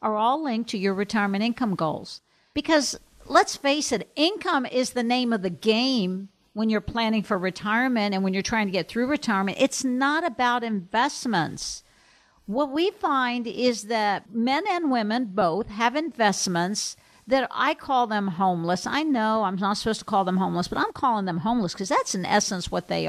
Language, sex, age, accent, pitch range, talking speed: English, female, 50-69, American, 200-260 Hz, 185 wpm